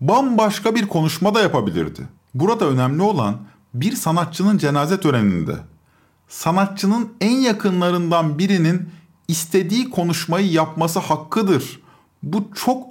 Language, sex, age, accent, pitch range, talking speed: Turkish, male, 50-69, native, 140-205 Hz, 100 wpm